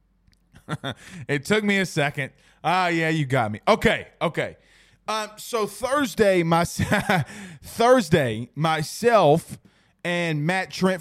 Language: English